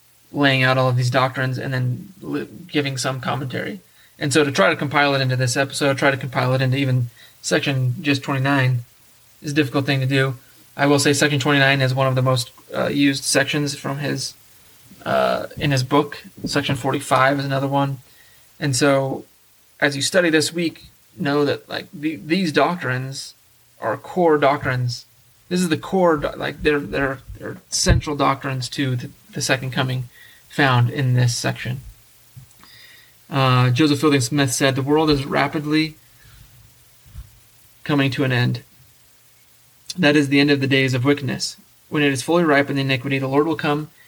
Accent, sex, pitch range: American, male, 130-150 Hz